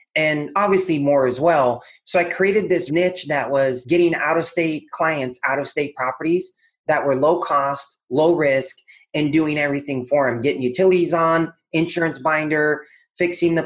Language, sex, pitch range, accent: English, male, 145-165 Hz, American